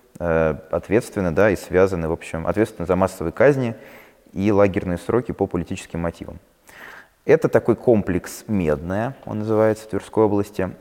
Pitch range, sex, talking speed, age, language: 85-110 Hz, male, 115 wpm, 20-39, Russian